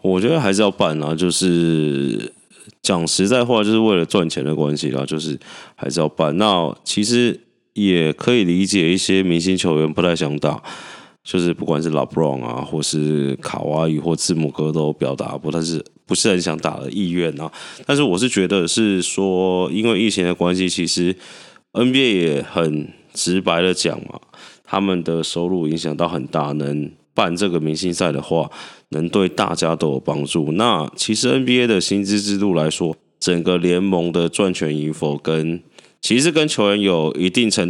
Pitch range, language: 80-95 Hz, Chinese